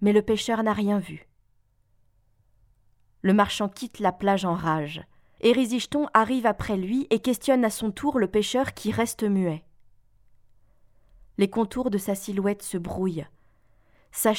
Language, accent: French, French